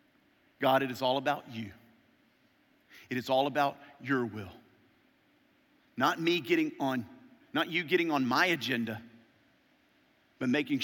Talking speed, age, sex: 135 wpm, 40-59, male